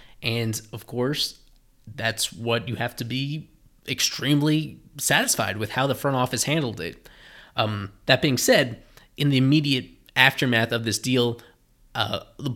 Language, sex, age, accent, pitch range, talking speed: English, male, 20-39, American, 115-135 Hz, 150 wpm